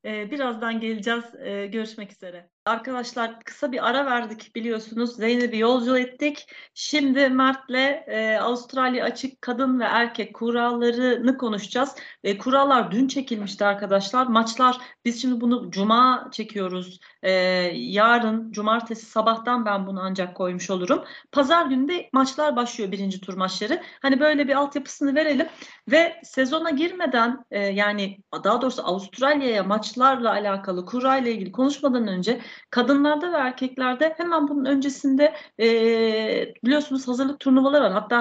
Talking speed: 130 wpm